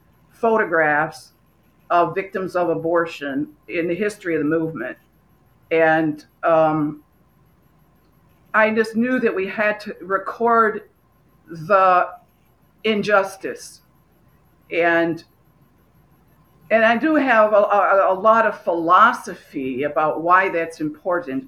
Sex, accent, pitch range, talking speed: female, American, 165-225 Hz, 105 wpm